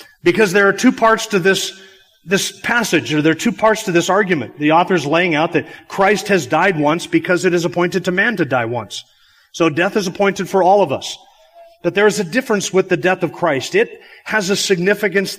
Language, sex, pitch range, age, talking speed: English, male, 160-195 Hz, 40-59, 225 wpm